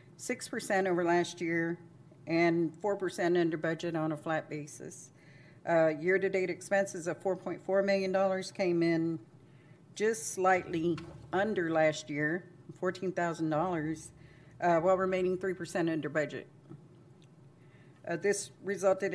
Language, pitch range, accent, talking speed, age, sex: English, 160-190 Hz, American, 120 wpm, 50-69, female